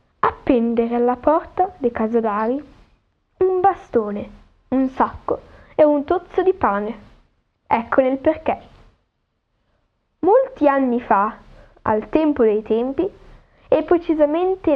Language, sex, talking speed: Italian, female, 105 wpm